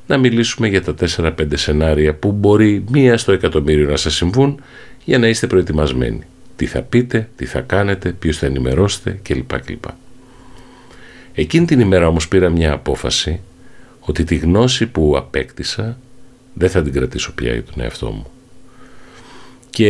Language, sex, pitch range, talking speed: Greek, male, 80-125 Hz, 150 wpm